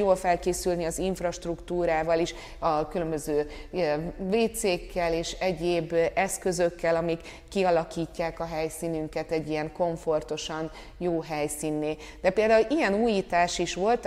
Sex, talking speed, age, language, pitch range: female, 110 wpm, 30-49, Hungarian, 170-200 Hz